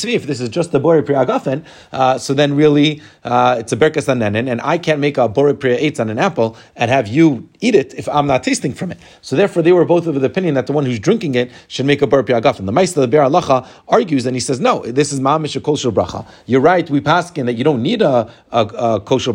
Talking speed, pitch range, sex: 255 wpm, 125-165 Hz, male